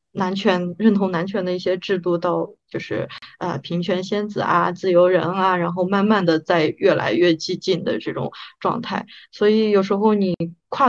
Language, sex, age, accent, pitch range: Chinese, female, 20-39, native, 180-235 Hz